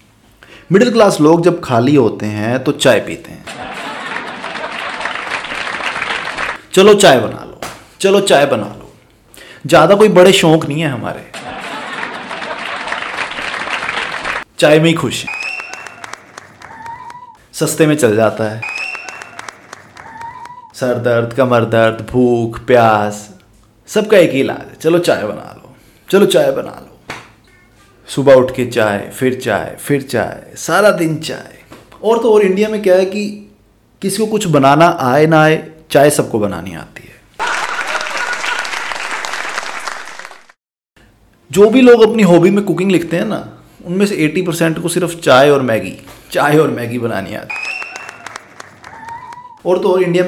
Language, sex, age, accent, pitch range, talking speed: Hindi, male, 30-49, native, 115-185 Hz, 130 wpm